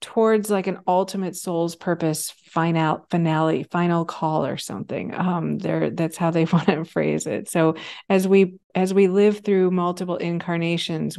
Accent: American